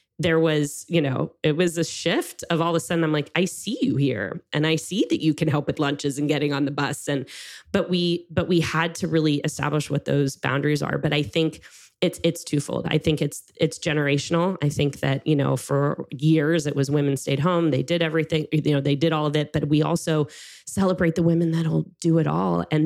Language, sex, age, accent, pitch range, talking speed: English, female, 20-39, American, 145-165 Hz, 235 wpm